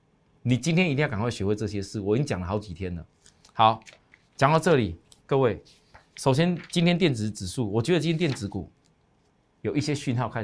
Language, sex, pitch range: Chinese, male, 105-155 Hz